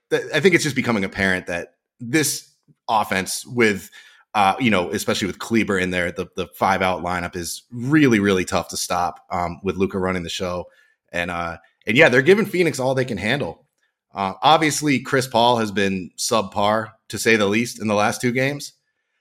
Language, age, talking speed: English, 30-49, 195 wpm